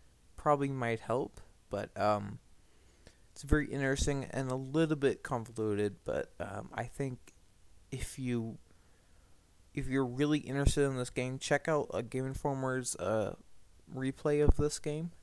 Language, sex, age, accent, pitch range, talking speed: English, male, 20-39, American, 105-135 Hz, 140 wpm